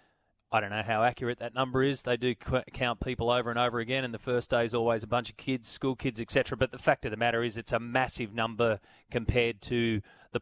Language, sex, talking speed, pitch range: English, male, 255 wpm, 115-140 Hz